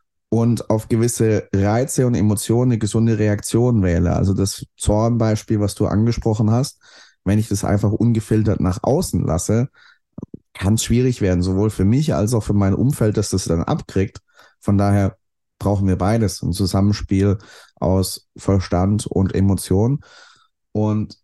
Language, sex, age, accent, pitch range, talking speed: German, male, 30-49, German, 100-120 Hz, 150 wpm